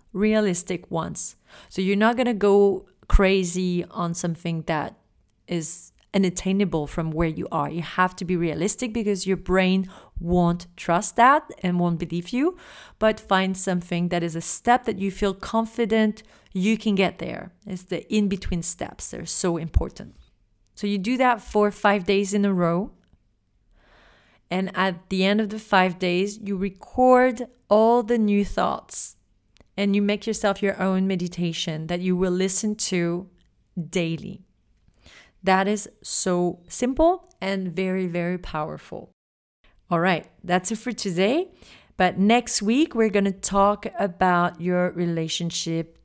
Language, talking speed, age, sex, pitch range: English, 150 wpm, 40-59, female, 175-210 Hz